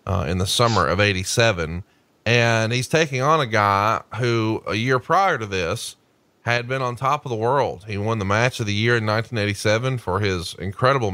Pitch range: 100-125 Hz